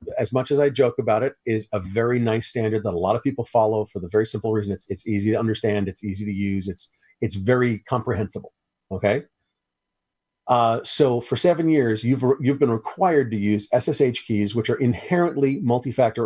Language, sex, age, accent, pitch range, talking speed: English, male, 40-59, American, 105-140 Hz, 205 wpm